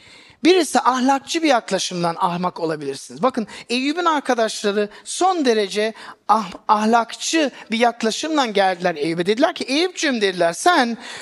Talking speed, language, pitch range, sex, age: 110 wpm, Turkish, 220-305 Hz, male, 50-69